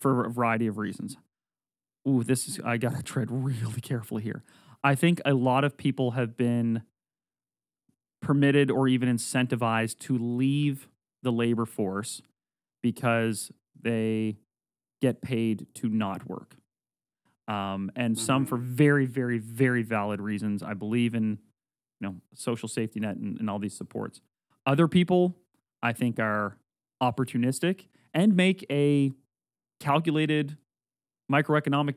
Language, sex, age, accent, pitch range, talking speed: English, male, 30-49, American, 115-150 Hz, 135 wpm